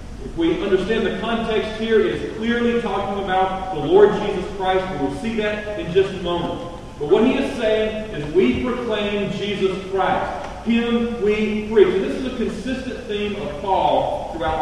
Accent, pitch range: American, 190-240 Hz